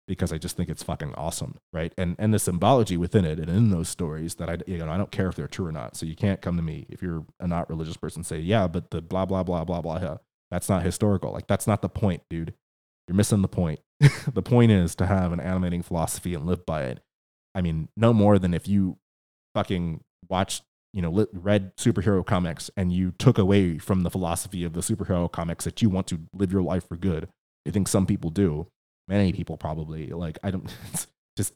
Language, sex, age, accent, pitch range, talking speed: English, male, 30-49, American, 85-100 Hz, 235 wpm